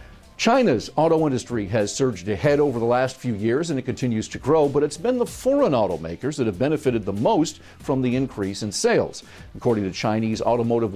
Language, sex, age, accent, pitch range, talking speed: English, male, 50-69, American, 110-150 Hz, 195 wpm